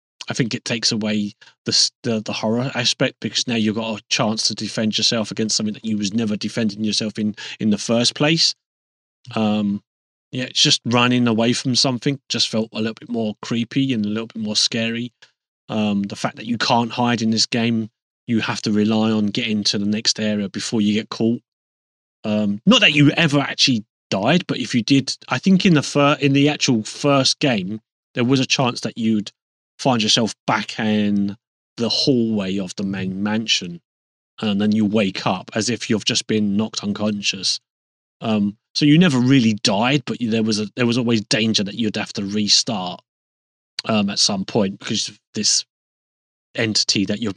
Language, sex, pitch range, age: English, male, 105-120 Hz, 30-49